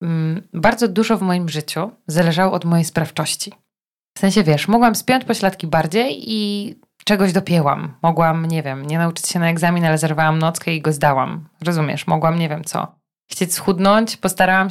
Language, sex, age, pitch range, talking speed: Polish, female, 20-39, 160-200 Hz, 165 wpm